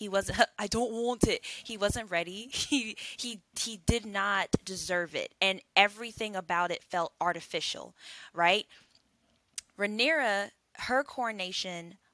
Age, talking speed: 10-29, 130 wpm